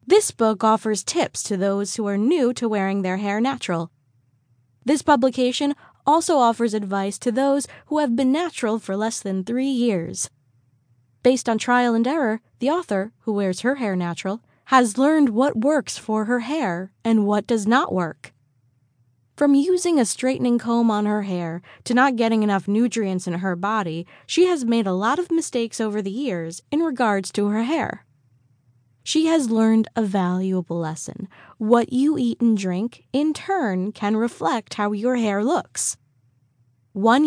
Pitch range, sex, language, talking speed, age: 180-265 Hz, female, English, 170 wpm, 20-39